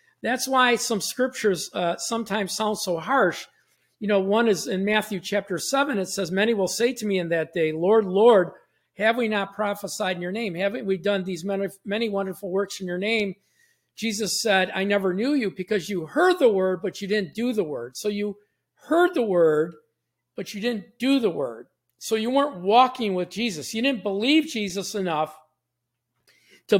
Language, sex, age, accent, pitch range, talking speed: English, male, 50-69, American, 185-235 Hz, 195 wpm